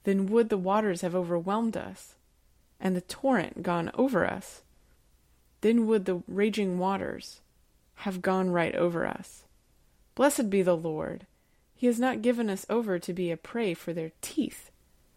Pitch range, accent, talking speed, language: 170-200 Hz, American, 160 wpm, English